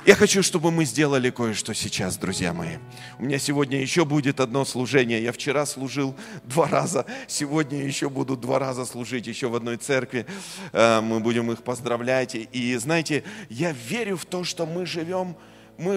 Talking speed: 170 wpm